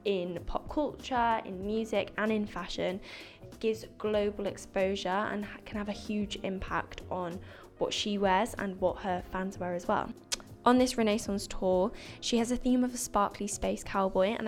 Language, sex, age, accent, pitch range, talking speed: English, female, 10-29, British, 190-220 Hz, 175 wpm